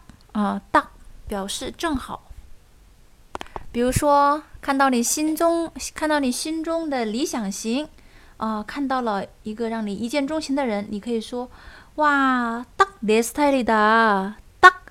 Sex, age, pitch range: female, 20-39, 215-285 Hz